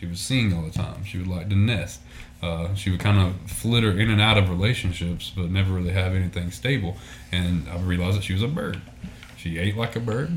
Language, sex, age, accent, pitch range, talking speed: English, male, 20-39, American, 90-110 Hz, 235 wpm